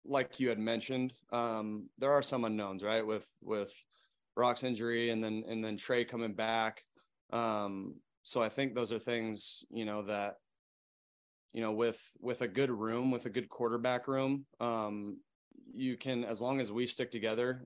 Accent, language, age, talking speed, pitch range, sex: American, English, 20-39, 175 wpm, 105-120 Hz, male